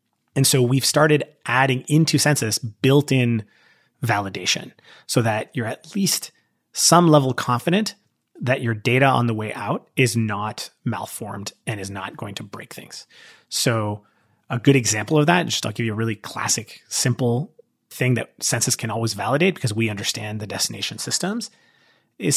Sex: male